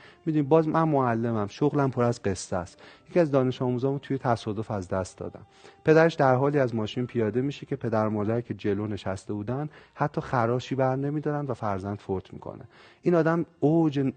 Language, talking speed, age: Persian, 180 wpm, 30-49